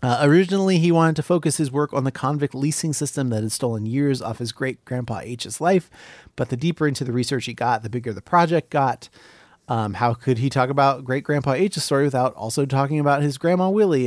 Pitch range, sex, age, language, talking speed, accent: 115-150 Hz, male, 30-49, English, 225 wpm, American